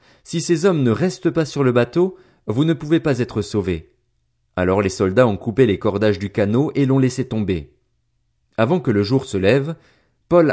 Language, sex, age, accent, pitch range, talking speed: French, male, 30-49, French, 105-150 Hz, 200 wpm